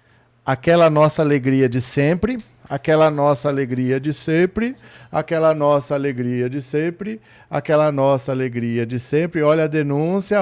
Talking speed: 130 wpm